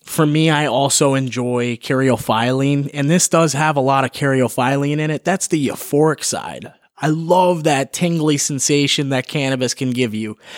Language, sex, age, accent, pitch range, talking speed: English, male, 20-39, American, 135-170 Hz, 170 wpm